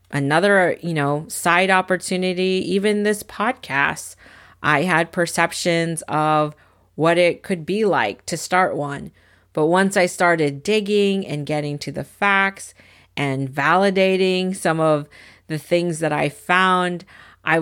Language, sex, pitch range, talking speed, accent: English, female, 145-185 Hz, 135 wpm, American